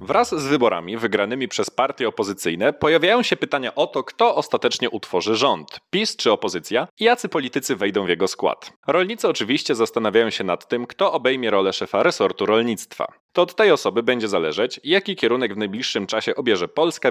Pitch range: 120-185 Hz